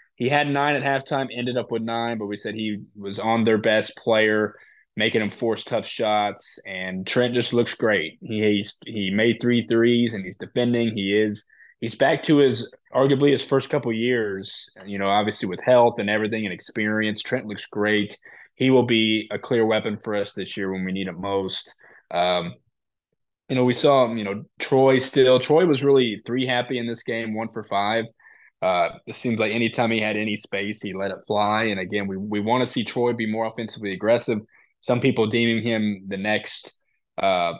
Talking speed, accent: 200 wpm, American